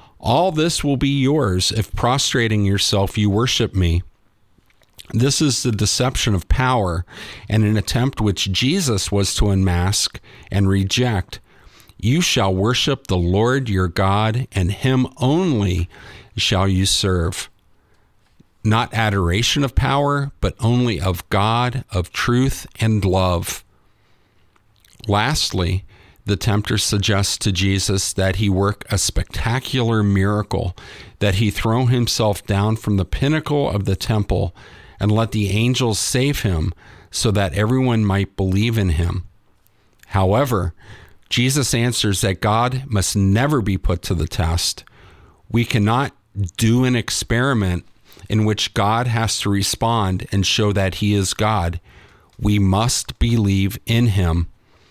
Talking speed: 135 wpm